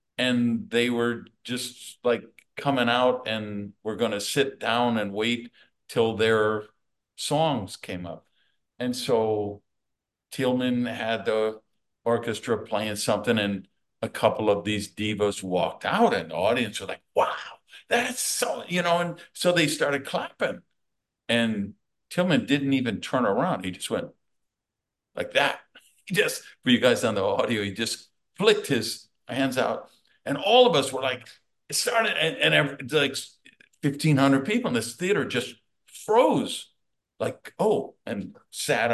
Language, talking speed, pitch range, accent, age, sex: English, 155 wpm, 105-135 Hz, American, 50-69, male